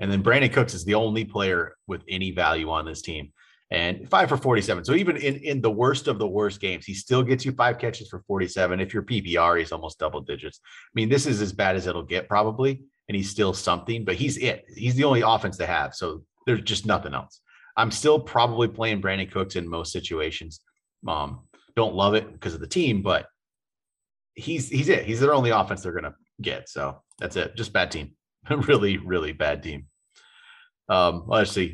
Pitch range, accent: 90-120 Hz, American